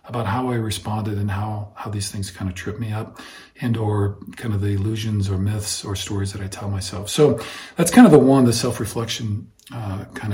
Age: 40-59